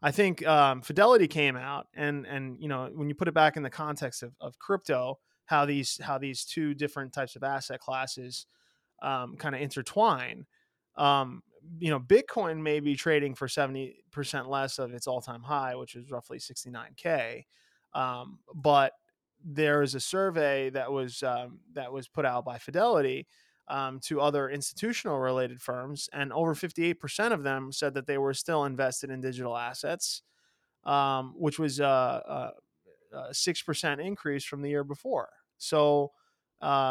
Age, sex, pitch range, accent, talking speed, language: 20-39, male, 135-160 Hz, American, 165 wpm, English